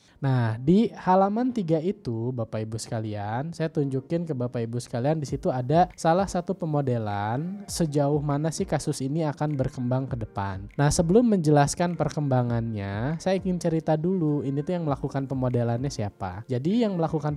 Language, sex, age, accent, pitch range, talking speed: Indonesian, male, 10-29, native, 125-155 Hz, 155 wpm